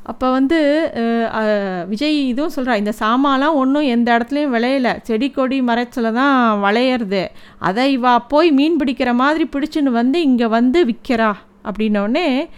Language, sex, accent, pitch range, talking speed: Tamil, female, native, 235-315 Hz, 135 wpm